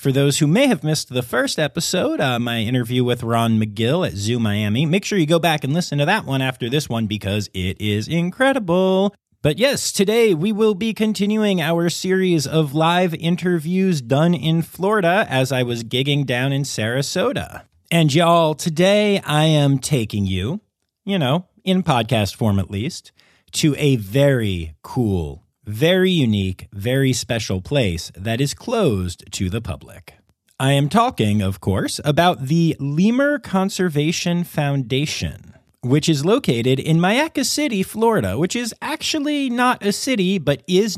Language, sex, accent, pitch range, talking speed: English, male, American, 105-180 Hz, 165 wpm